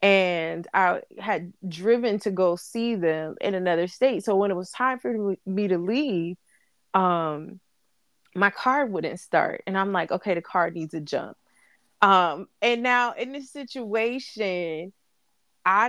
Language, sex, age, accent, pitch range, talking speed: English, female, 20-39, American, 210-275 Hz, 155 wpm